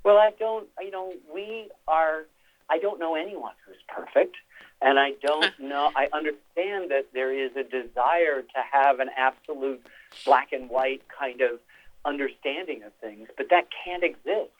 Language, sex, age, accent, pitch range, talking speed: English, male, 50-69, American, 140-190 Hz, 165 wpm